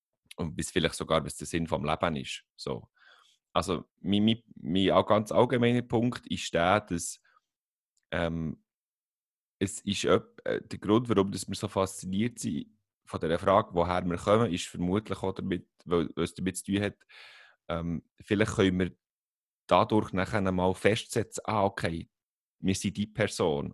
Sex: male